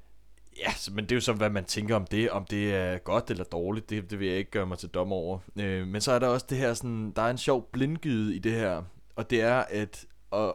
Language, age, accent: Danish, 20-39, native